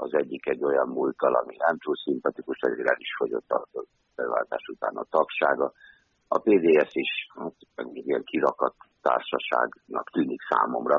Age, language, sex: 60-79, Hungarian, male